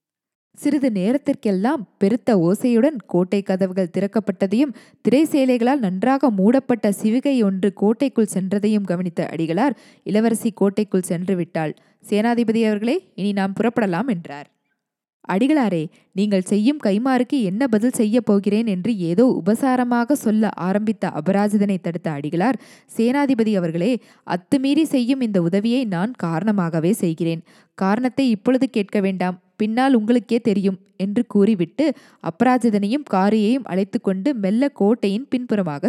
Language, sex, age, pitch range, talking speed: Tamil, female, 20-39, 190-250 Hz, 110 wpm